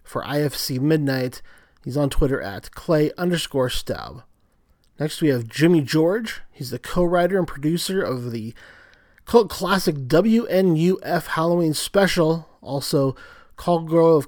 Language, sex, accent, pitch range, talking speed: English, male, American, 135-170 Hz, 120 wpm